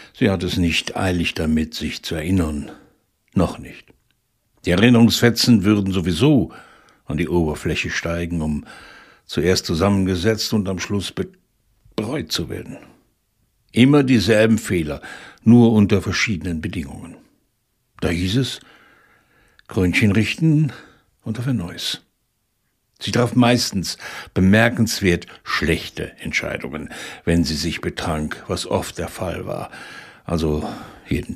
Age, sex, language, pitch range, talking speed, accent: 60-79, male, German, 85-115 Hz, 115 wpm, German